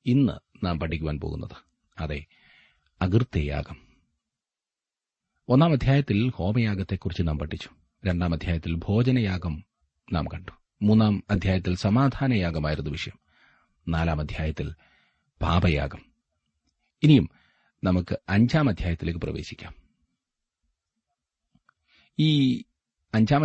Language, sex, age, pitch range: Malayalam, male, 30-49, 80-110 Hz